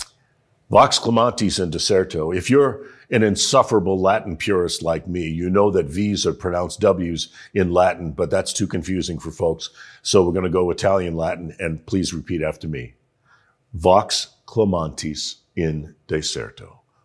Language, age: English, 50-69